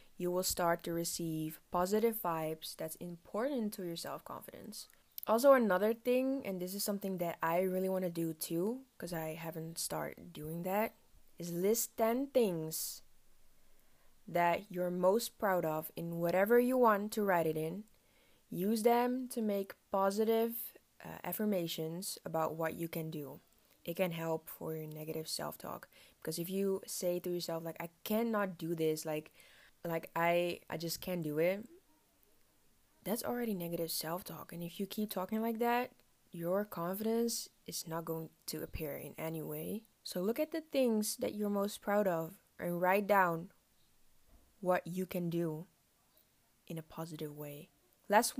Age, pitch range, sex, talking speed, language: 20-39, 165-220 Hz, female, 160 wpm, English